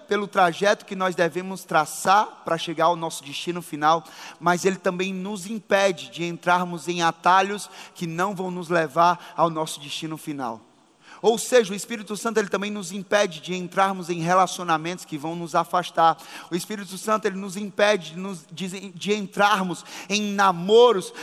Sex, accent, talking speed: male, Brazilian, 160 wpm